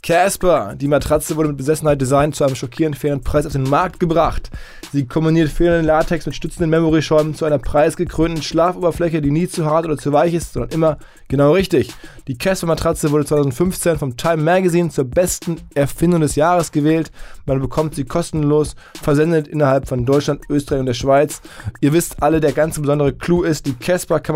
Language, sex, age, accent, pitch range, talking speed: German, male, 20-39, German, 145-165 Hz, 185 wpm